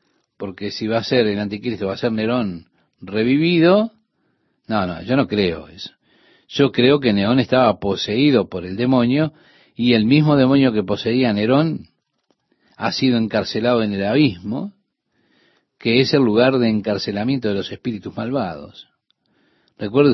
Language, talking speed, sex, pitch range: Spanish, 150 wpm, male, 110-140 Hz